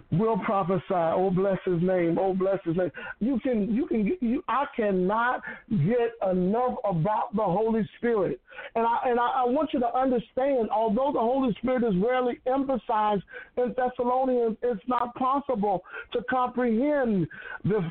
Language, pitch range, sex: English, 195-250 Hz, male